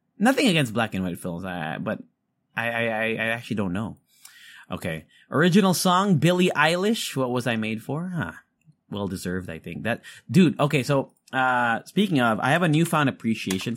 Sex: male